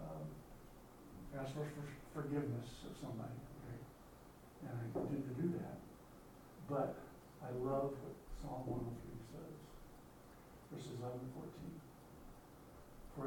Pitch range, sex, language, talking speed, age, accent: 125-155 Hz, male, English, 110 wpm, 60-79, American